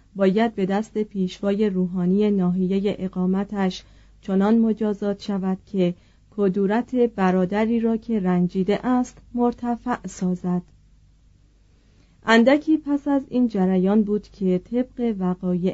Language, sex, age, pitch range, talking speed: Persian, female, 40-59, 185-225 Hz, 105 wpm